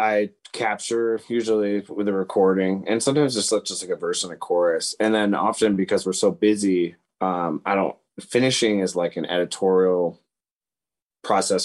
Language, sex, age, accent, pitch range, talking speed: English, male, 30-49, American, 95-120 Hz, 165 wpm